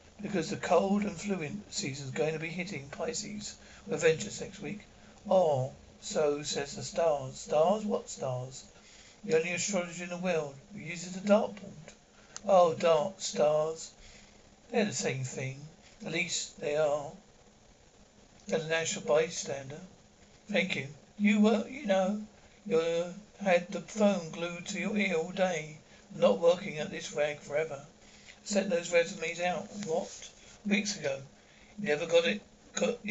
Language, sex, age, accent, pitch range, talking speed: English, male, 60-79, British, 160-205 Hz, 145 wpm